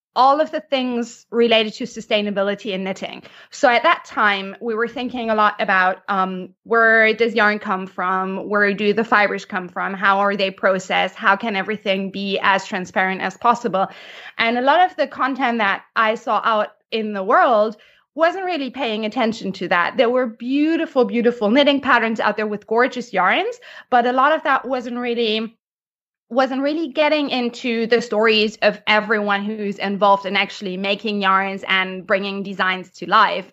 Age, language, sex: 20-39, English, female